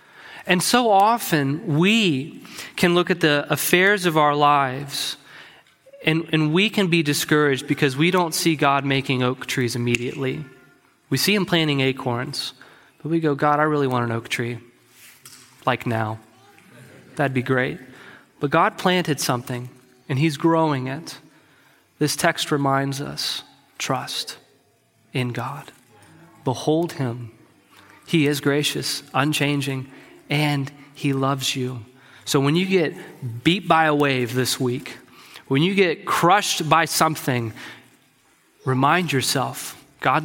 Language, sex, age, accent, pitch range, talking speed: English, male, 30-49, American, 130-160 Hz, 135 wpm